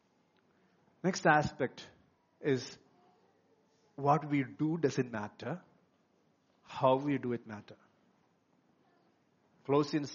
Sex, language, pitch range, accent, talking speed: male, English, 125-175 Hz, Indian, 85 wpm